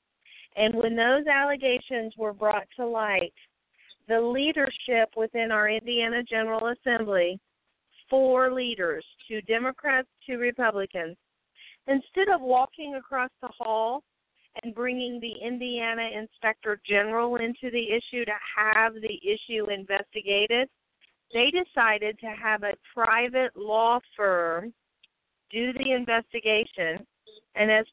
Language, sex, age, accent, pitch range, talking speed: English, female, 40-59, American, 215-255 Hz, 115 wpm